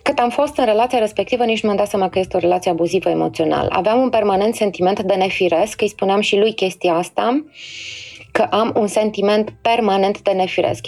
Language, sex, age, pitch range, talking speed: Romanian, female, 20-39, 180-230 Hz, 200 wpm